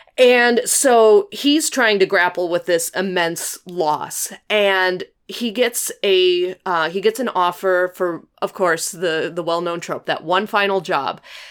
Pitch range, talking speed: 160-195 Hz, 155 wpm